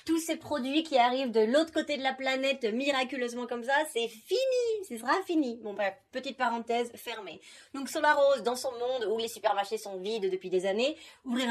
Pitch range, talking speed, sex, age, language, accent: 205-265 Hz, 210 wpm, female, 30-49, French, French